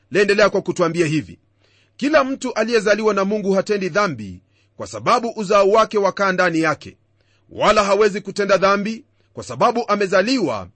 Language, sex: Swahili, male